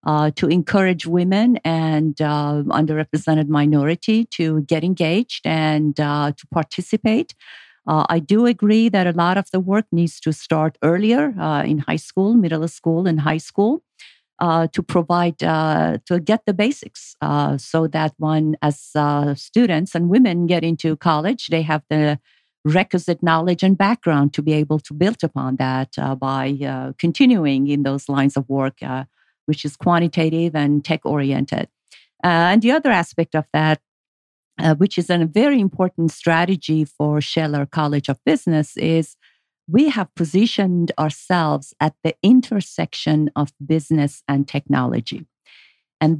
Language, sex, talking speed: English, female, 150 wpm